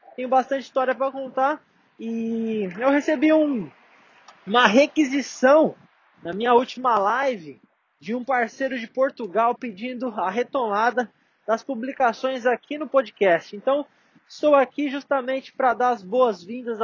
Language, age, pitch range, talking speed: Portuguese, 20-39, 210-260 Hz, 130 wpm